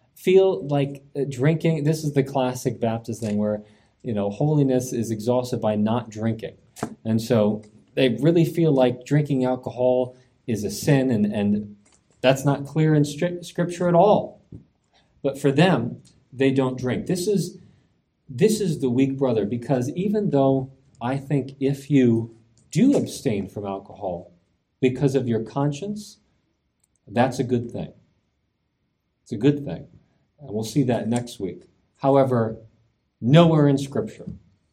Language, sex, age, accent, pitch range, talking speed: English, male, 40-59, American, 110-140 Hz, 145 wpm